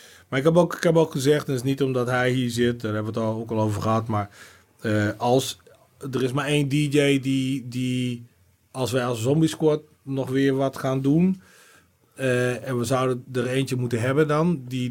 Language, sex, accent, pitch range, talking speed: Dutch, male, Dutch, 105-130 Hz, 220 wpm